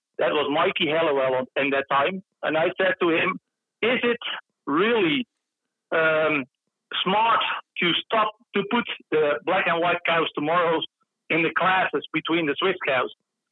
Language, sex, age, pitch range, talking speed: Danish, male, 50-69, 155-195 Hz, 150 wpm